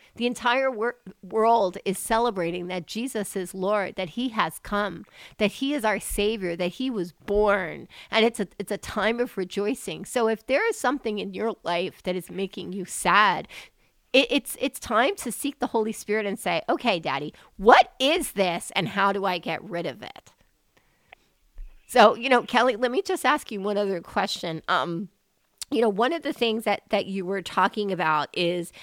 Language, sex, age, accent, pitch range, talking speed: English, female, 40-59, American, 190-235 Hz, 195 wpm